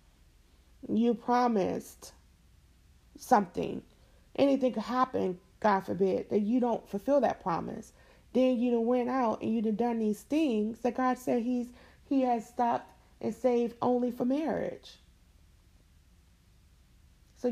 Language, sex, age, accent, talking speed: English, female, 40-59, American, 130 wpm